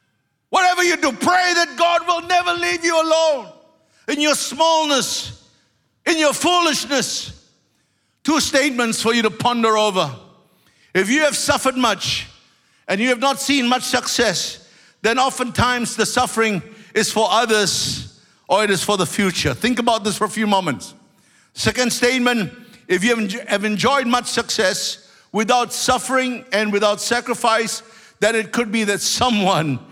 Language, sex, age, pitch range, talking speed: English, male, 60-79, 215-260 Hz, 150 wpm